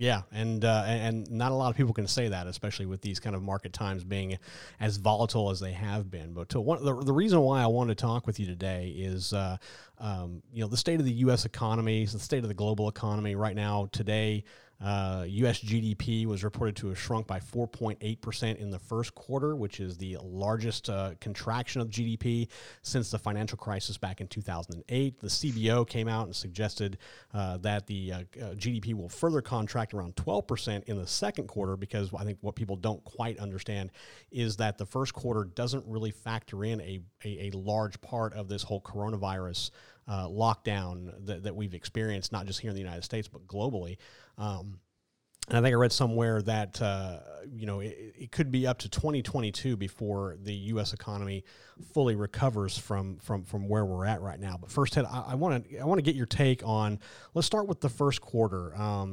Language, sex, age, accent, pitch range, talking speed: English, male, 30-49, American, 100-120 Hz, 205 wpm